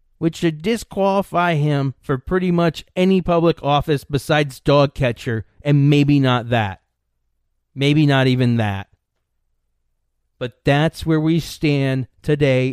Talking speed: 125 wpm